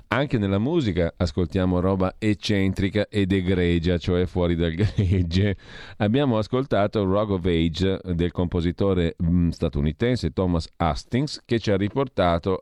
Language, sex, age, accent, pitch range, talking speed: Italian, male, 40-59, native, 80-100 Hz, 125 wpm